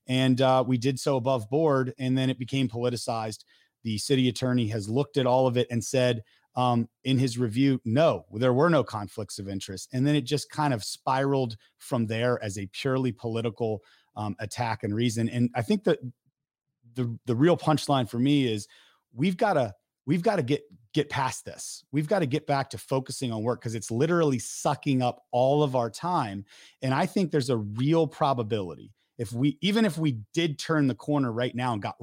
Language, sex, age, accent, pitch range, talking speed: English, male, 30-49, American, 120-150 Hz, 200 wpm